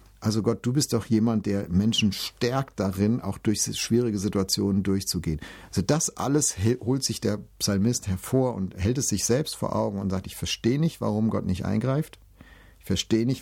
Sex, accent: male, German